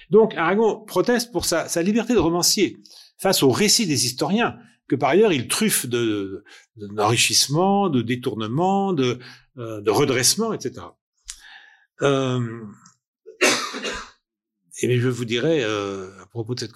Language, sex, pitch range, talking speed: French, male, 125-185 Hz, 145 wpm